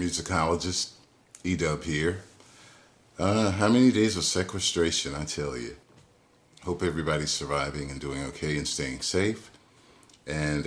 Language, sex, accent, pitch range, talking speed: English, male, American, 70-85 Hz, 125 wpm